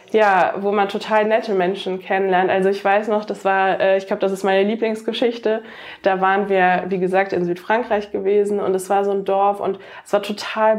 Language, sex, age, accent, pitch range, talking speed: German, female, 20-39, German, 190-220 Hz, 205 wpm